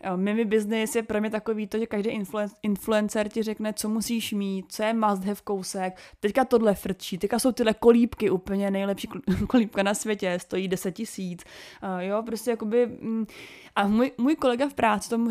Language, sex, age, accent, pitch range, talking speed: Czech, female, 20-39, native, 195-225 Hz, 185 wpm